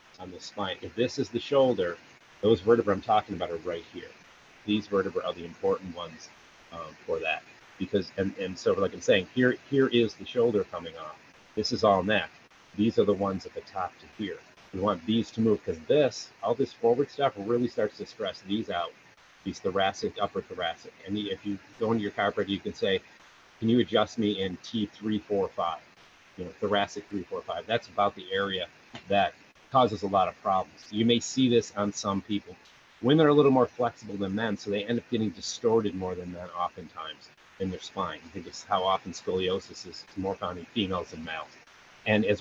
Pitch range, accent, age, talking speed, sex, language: 100-120 Hz, American, 30-49, 205 wpm, male, English